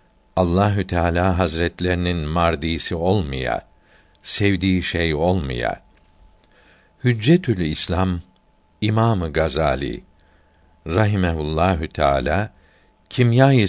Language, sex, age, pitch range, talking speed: Turkish, male, 60-79, 80-105 Hz, 65 wpm